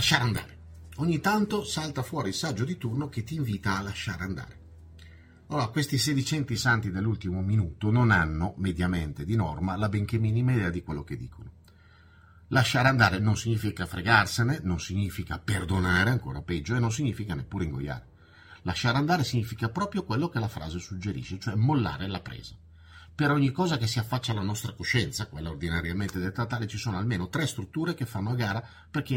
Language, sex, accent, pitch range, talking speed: Italian, male, native, 90-130 Hz, 180 wpm